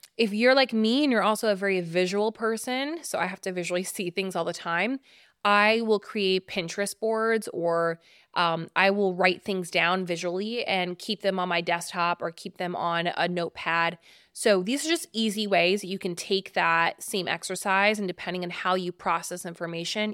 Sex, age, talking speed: female, 20-39, 195 wpm